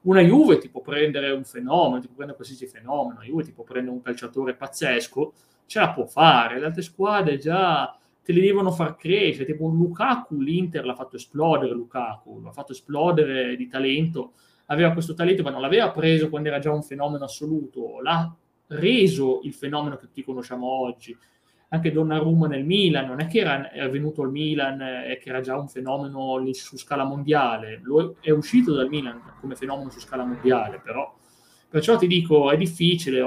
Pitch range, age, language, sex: 130-165 Hz, 20-39, Italian, male